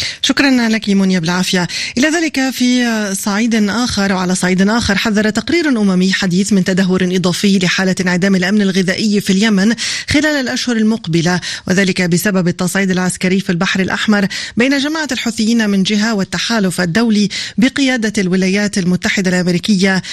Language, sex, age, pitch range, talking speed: Arabic, female, 20-39, 190-225 Hz, 135 wpm